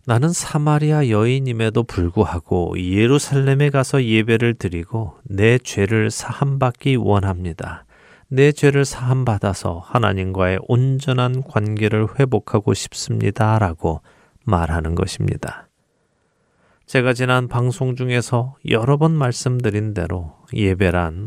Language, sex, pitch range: Korean, male, 95-135 Hz